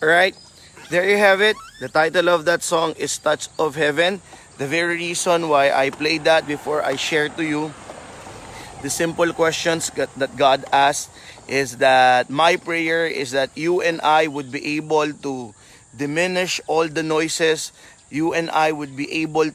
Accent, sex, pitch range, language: native, male, 140-170 Hz, Filipino